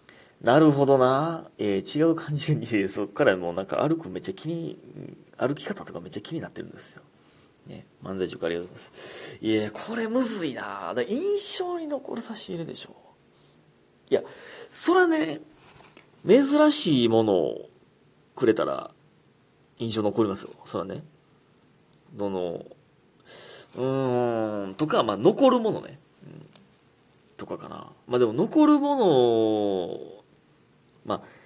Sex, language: male, Japanese